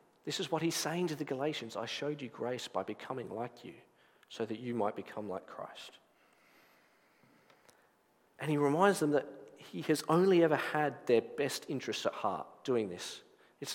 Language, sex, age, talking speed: English, male, 40-59, 180 wpm